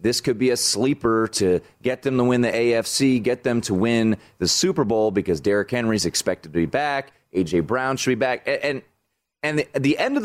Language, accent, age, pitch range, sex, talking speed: English, American, 30-49, 105-150 Hz, male, 225 wpm